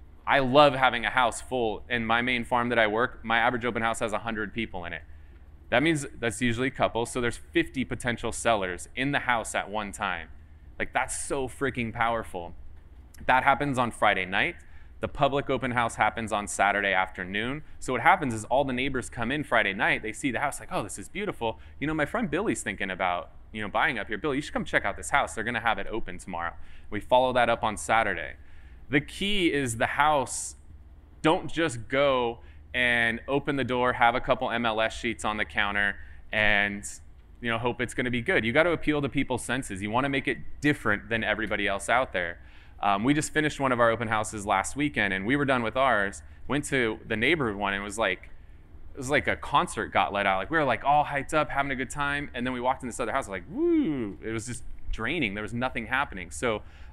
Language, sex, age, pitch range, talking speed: English, male, 20-39, 95-130 Hz, 235 wpm